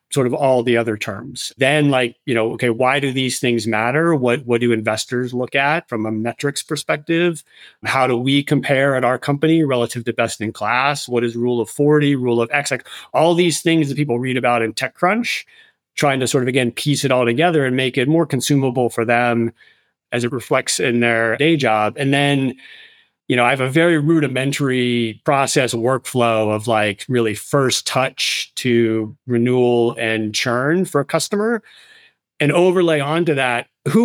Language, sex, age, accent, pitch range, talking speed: English, male, 30-49, American, 115-145 Hz, 185 wpm